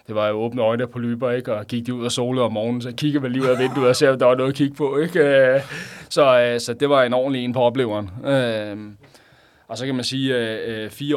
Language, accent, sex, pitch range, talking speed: Danish, native, male, 105-120 Hz, 255 wpm